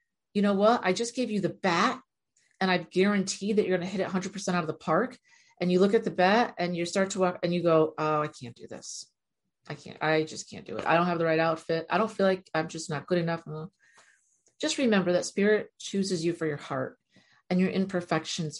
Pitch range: 160-210 Hz